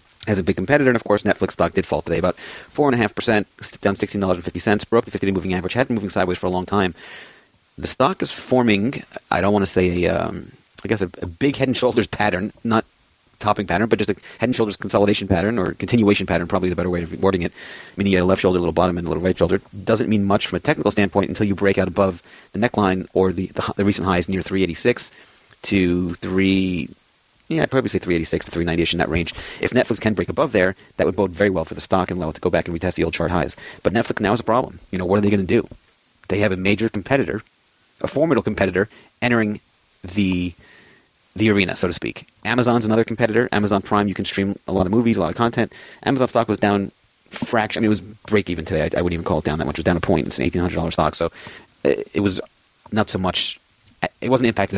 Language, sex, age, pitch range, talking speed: English, male, 30-49, 90-110 Hz, 245 wpm